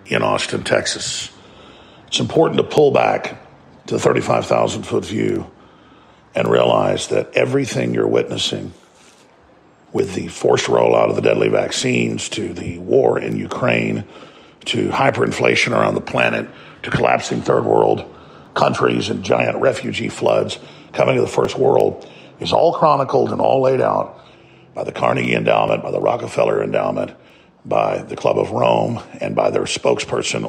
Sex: male